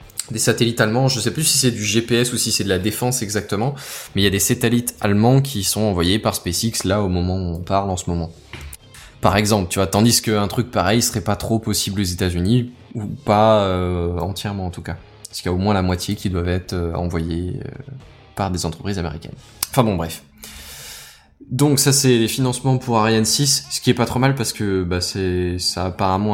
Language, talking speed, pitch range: French, 230 wpm, 95-120 Hz